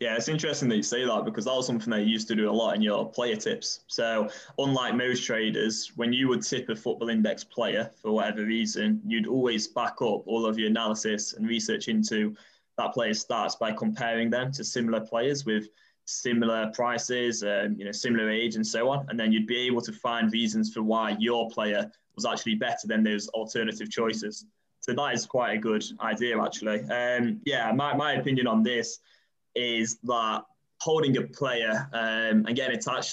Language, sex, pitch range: English, male, 110-125 Hz